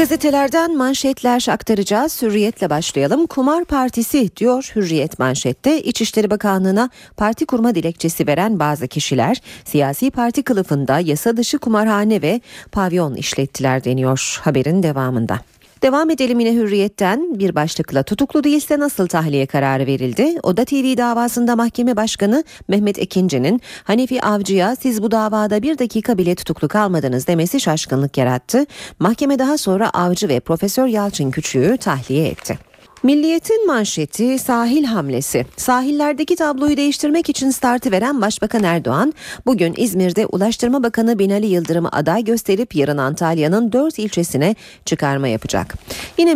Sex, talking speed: female, 130 wpm